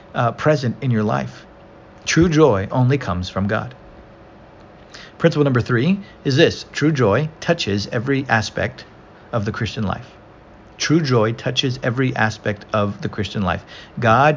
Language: English